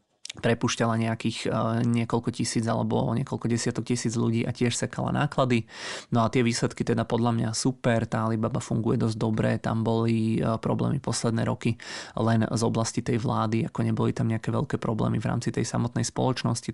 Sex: male